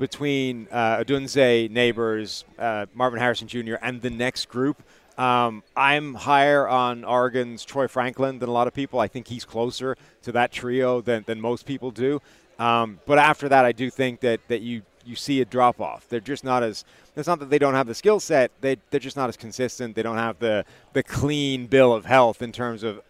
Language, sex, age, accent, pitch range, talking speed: English, male, 30-49, American, 115-135 Hz, 210 wpm